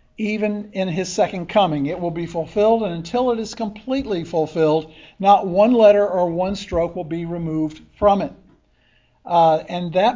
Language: English